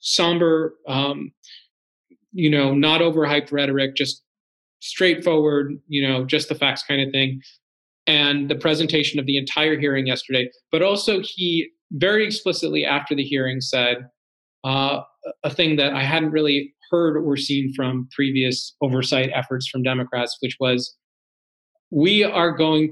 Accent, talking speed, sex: American, 145 wpm, male